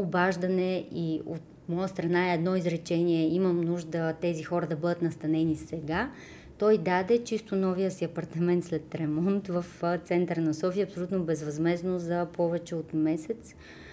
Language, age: Bulgarian, 30-49